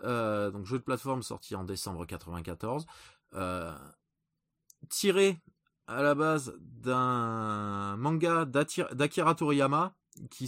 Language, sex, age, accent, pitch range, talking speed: French, male, 20-39, French, 110-155 Hz, 110 wpm